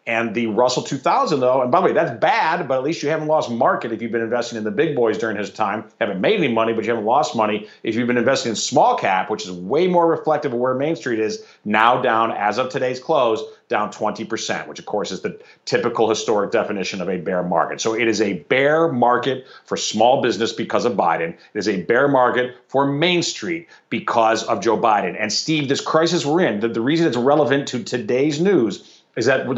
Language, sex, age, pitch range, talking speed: English, male, 40-59, 115-145 Hz, 235 wpm